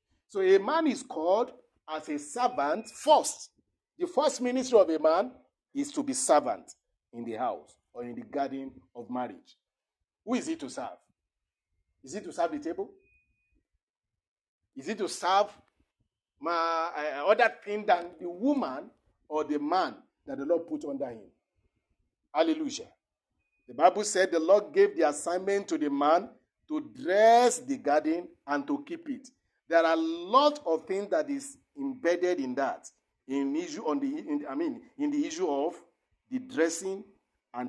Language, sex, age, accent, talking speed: English, male, 50-69, Nigerian, 165 wpm